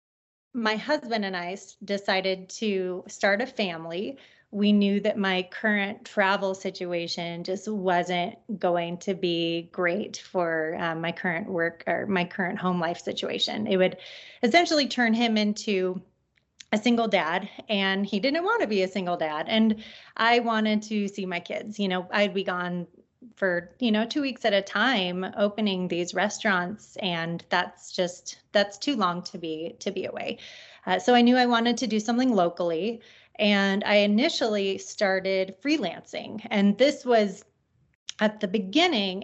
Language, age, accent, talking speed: English, 30-49, American, 160 wpm